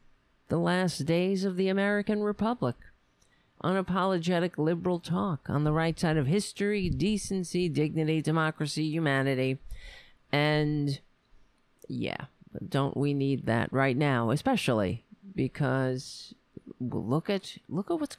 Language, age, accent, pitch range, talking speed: English, 50-69, American, 130-185 Hz, 115 wpm